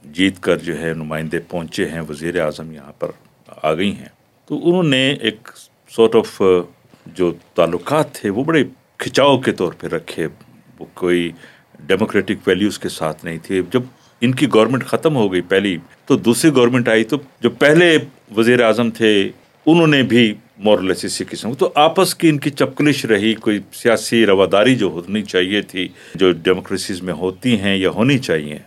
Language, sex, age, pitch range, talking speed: Urdu, male, 50-69, 95-145 Hz, 180 wpm